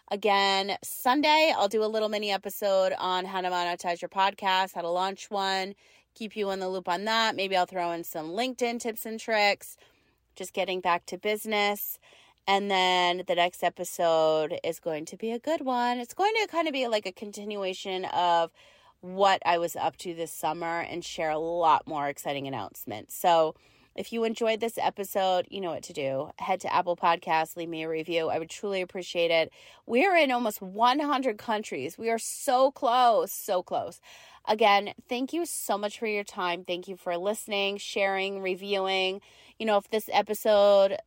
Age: 30-49